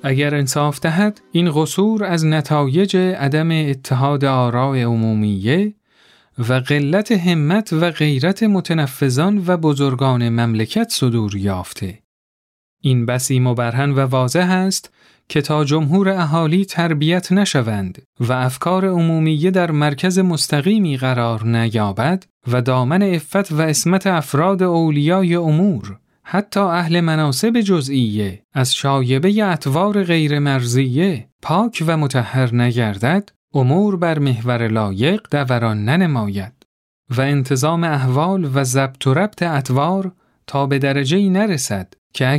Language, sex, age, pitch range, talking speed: Persian, male, 40-59, 125-175 Hz, 115 wpm